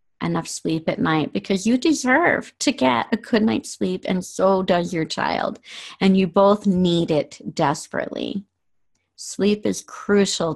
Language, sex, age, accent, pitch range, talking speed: English, female, 40-59, American, 160-200 Hz, 155 wpm